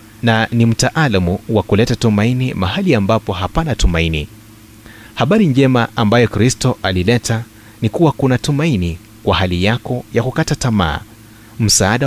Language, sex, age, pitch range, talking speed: Swahili, male, 30-49, 100-130 Hz, 130 wpm